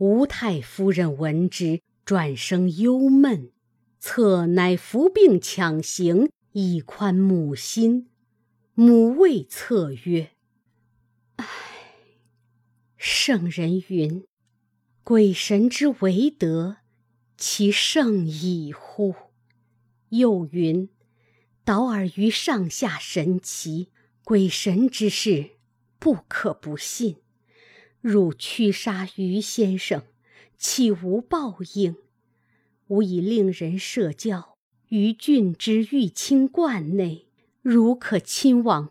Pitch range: 155-220 Hz